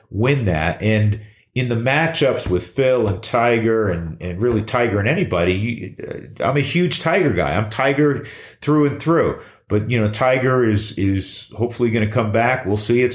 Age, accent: 40-59, American